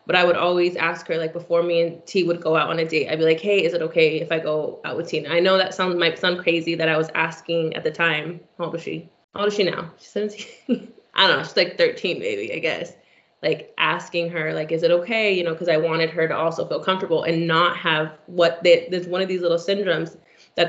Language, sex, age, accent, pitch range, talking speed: English, female, 20-39, American, 165-180 Hz, 270 wpm